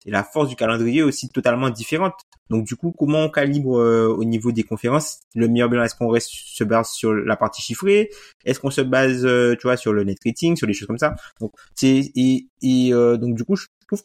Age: 20-39